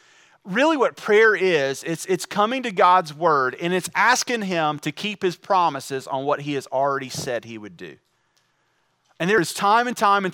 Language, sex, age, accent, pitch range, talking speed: English, male, 30-49, American, 155-200 Hz, 195 wpm